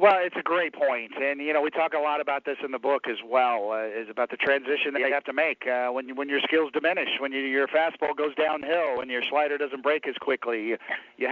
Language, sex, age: English, male, 50-69